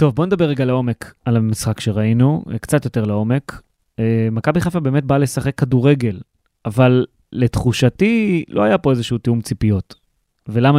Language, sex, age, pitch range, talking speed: Hebrew, male, 30-49, 120-170 Hz, 150 wpm